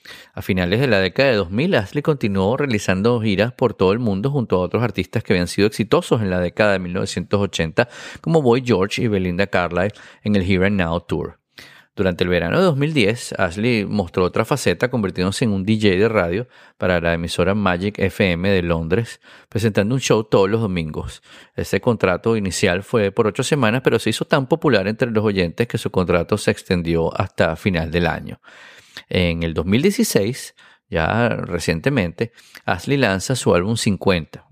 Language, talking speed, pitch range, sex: Spanish, 175 wpm, 90-115 Hz, male